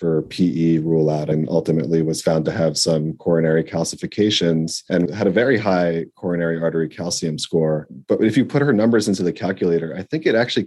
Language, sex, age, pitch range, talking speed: English, male, 30-49, 80-95 Hz, 195 wpm